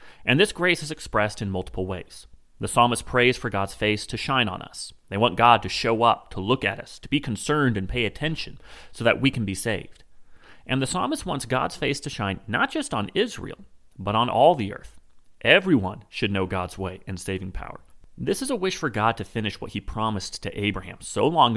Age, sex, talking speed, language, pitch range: 30-49, male, 225 wpm, English, 95-130 Hz